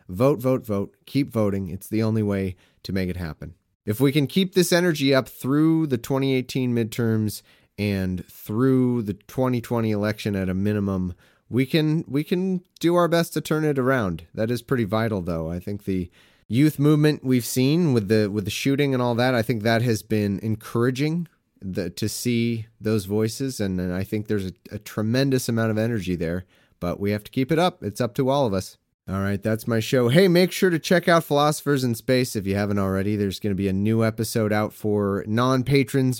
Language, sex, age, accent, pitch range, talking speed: English, male, 30-49, American, 100-130 Hz, 210 wpm